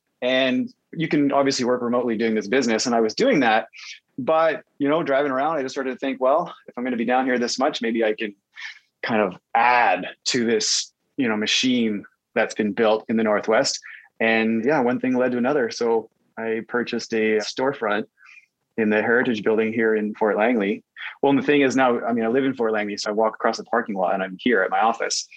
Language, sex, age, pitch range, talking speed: English, male, 20-39, 110-135 Hz, 230 wpm